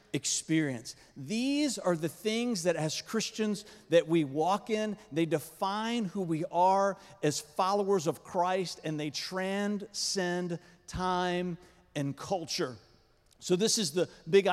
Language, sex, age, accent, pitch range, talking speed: English, male, 40-59, American, 160-200 Hz, 130 wpm